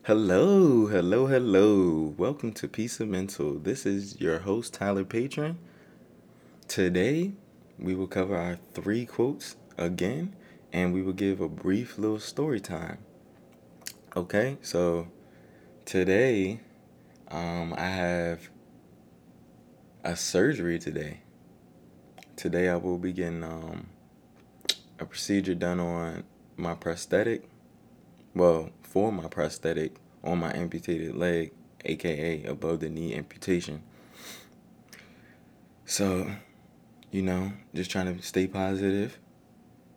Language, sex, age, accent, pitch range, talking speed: English, male, 20-39, American, 85-95 Hz, 110 wpm